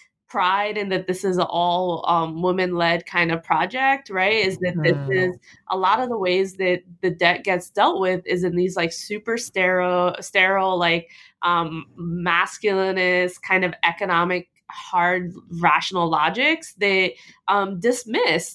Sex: female